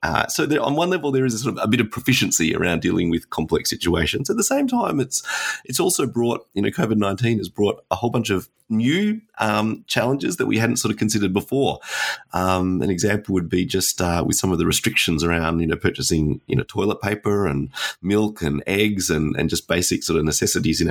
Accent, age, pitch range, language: Australian, 30-49, 90-110 Hz, English